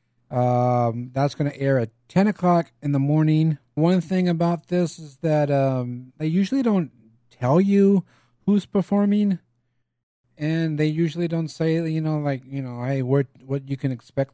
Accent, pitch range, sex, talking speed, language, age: American, 120-145 Hz, male, 165 wpm, English, 30-49